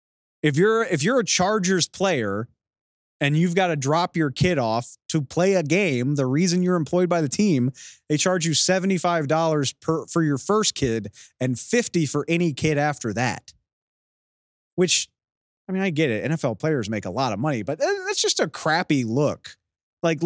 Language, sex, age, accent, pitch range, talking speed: English, male, 30-49, American, 125-170 Hz, 185 wpm